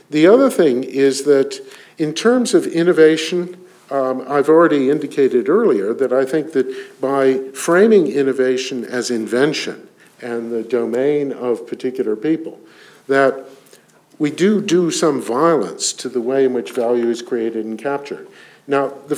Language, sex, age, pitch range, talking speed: English, male, 50-69, 120-175 Hz, 145 wpm